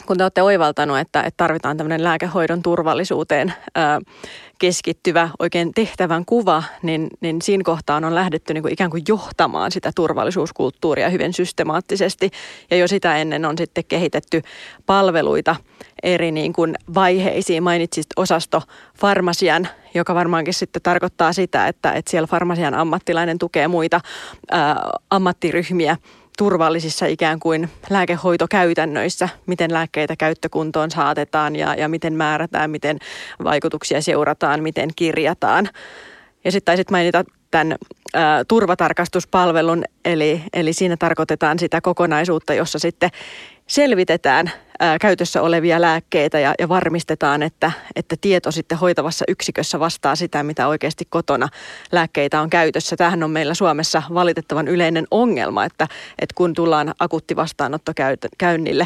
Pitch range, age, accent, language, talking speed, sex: 155-175 Hz, 30-49, native, Finnish, 125 wpm, female